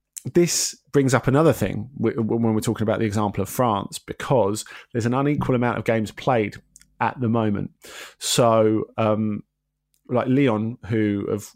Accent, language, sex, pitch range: British, English, male, 110-125 Hz